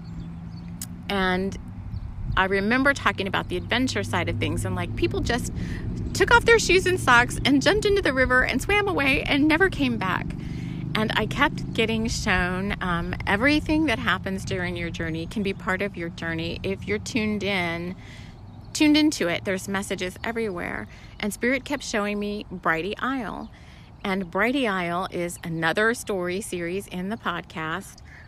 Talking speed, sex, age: 165 wpm, female, 30-49